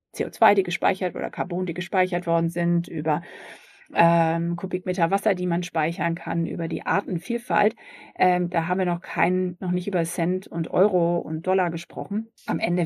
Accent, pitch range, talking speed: German, 165-180 Hz, 175 wpm